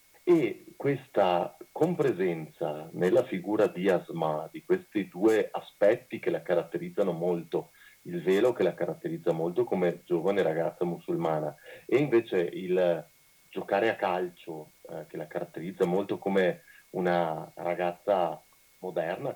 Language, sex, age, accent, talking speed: Italian, male, 40-59, native, 125 wpm